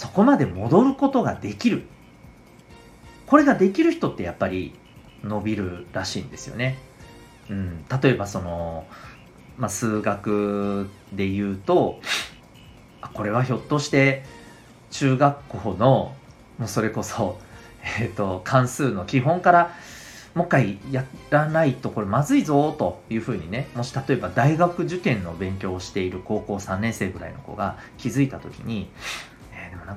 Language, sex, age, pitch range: Japanese, male, 40-59, 100-135 Hz